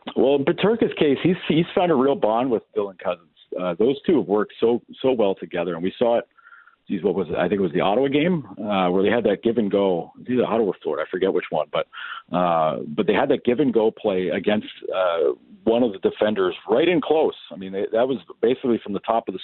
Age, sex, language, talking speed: 40-59, male, English, 255 wpm